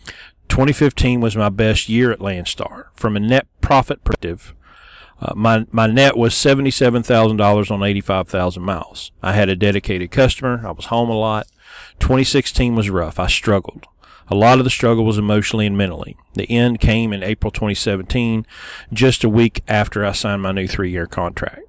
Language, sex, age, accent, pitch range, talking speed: English, male, 40-59, American, 95-120 Hz, 170 wpm